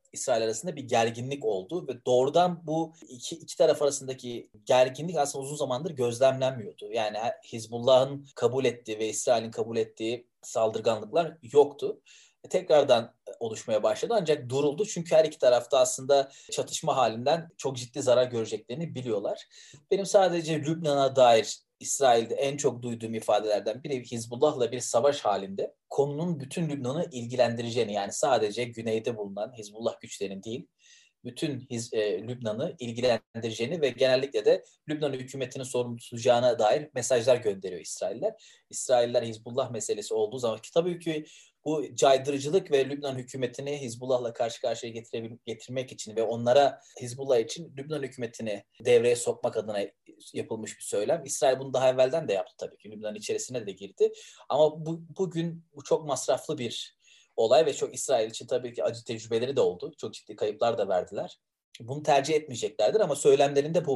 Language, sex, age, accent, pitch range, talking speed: Turkish, male, 30-49, native, 120-170 Hz, 145 wpm